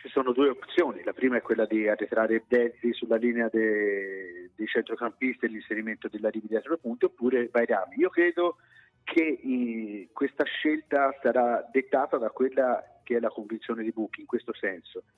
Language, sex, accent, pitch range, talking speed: Italian, male, native, 115-145 Hz, 160 wpm